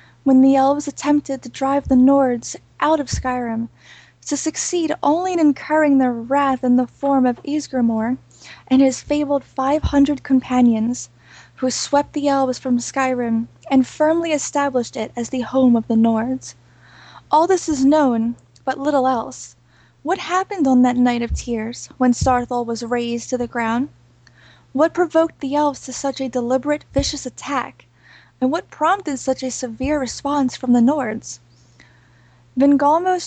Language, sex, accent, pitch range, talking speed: English, female, American, 240-290 Hz, 155 wpm